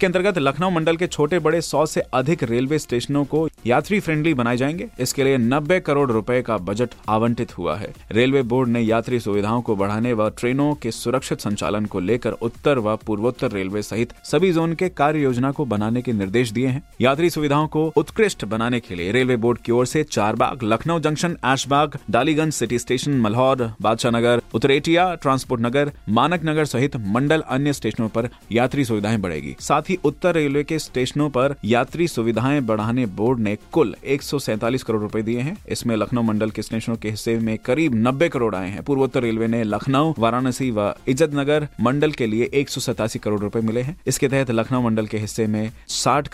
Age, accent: 30-49, native